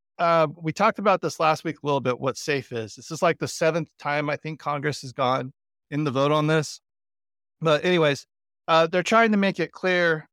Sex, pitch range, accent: male, 130-165 Hz, American